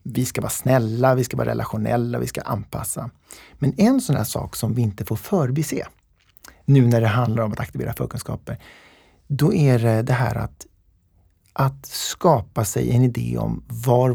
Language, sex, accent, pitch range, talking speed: Swedish, male, native, 110-140 Hz, 180 wpm